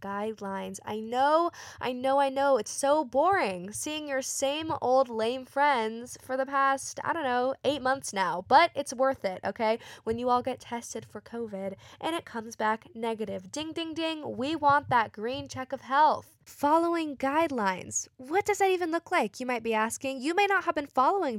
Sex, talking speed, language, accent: female, 195 wpm, English, American